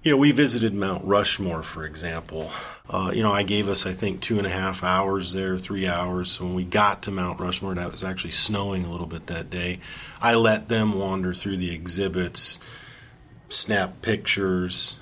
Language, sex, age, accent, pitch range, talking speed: English, male, 40-59, American, 95-110 Hz, 200 wpm